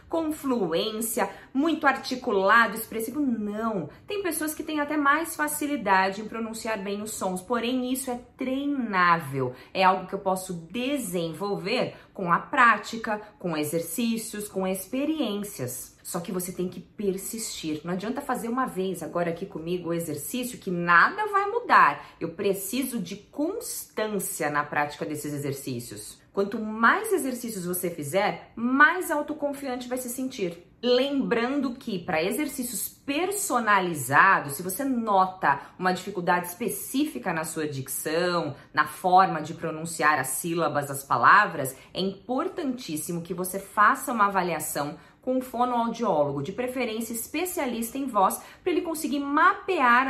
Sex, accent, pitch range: female, Brazilian, 175-255 Hz